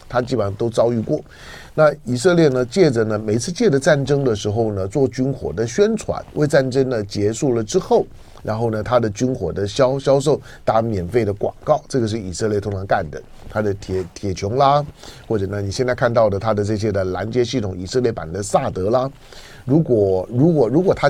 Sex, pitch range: male, 100-140 Hz